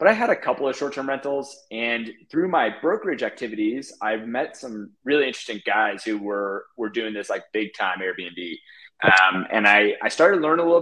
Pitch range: 110-145 Hz